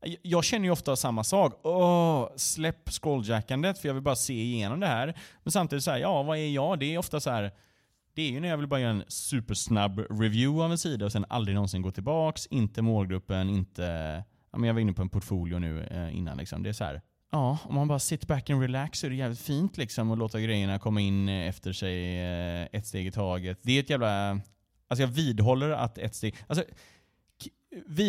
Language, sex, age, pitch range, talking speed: Swedish, male, 30-49, 100-140 Hz, 230 wpm